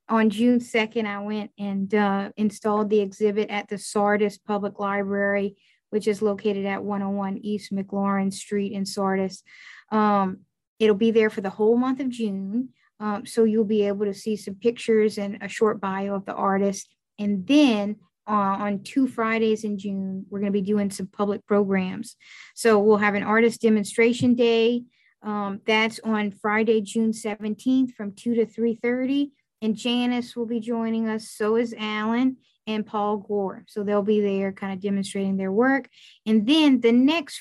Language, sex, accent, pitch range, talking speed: English, female, American, 200-225 Hz, 175 wpm